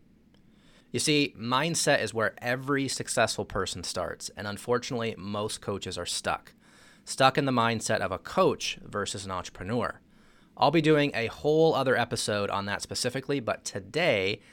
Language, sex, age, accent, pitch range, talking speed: English, male, 30-49, American, 100-130 Hz, 155 wpm